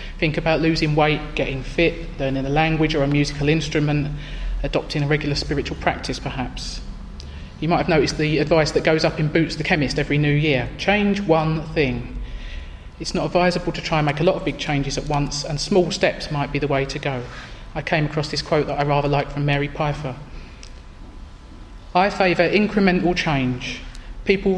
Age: 30-49